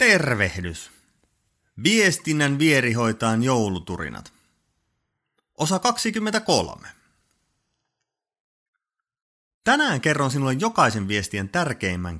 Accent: native